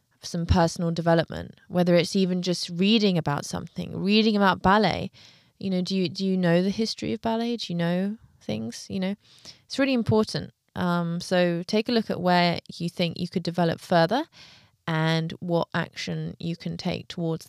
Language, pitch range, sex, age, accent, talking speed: English, 170-205 Hz, female, 20-39, British, 180 wpm